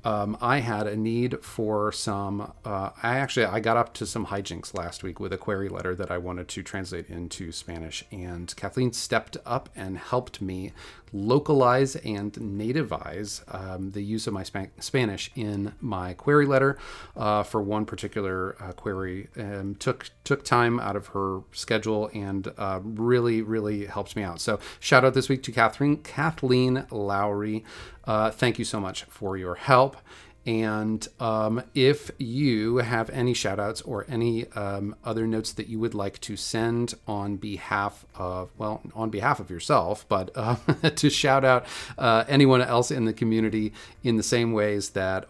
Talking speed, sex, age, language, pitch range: 170 wpm, male, 30-49, English, 95-120 Hz